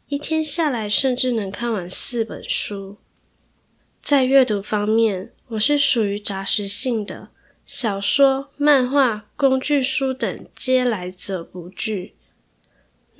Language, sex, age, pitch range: Chinese, female, 10-29, 200-255 Hz